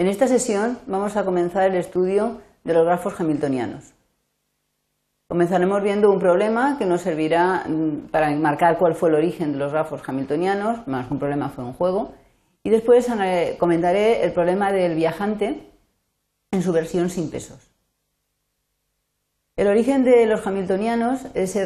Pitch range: 165-205 Hz